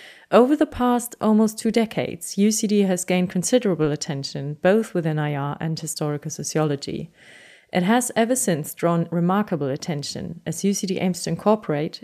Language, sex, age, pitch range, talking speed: English, female, 30-49, 160-205 Hz, 145 wpm